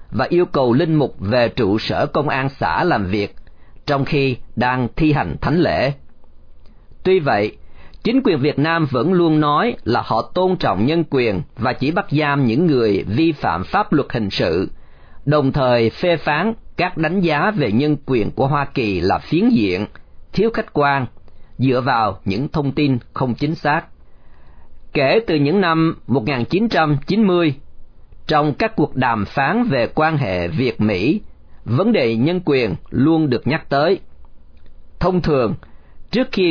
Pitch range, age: 115-160 Hz, 40-59